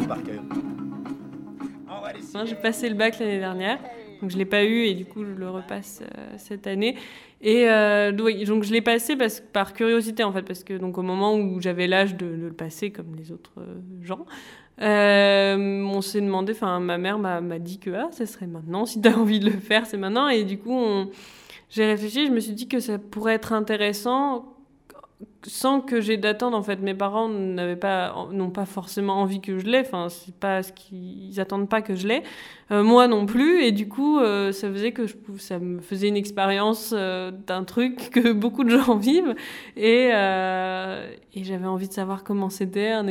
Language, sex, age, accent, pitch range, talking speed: French, female, 20-39, French, 190-225 Hz, 200 wpm